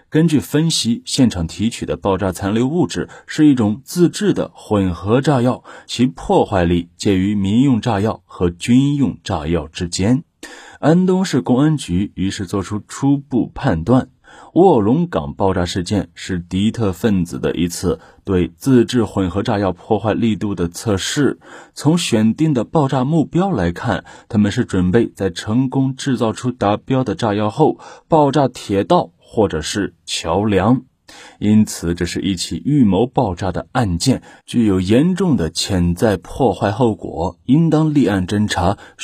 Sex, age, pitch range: male, 30-49, 90-130 Hz